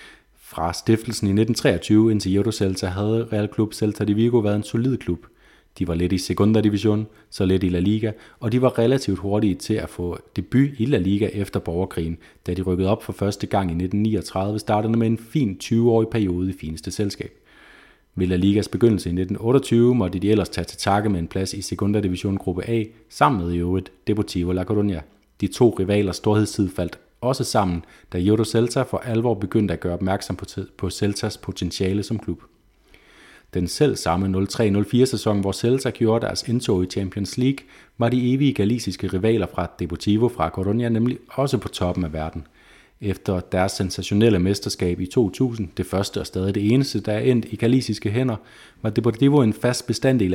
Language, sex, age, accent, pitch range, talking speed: Danish, male, 30-49, native, 95-115 Hz, 190 wpm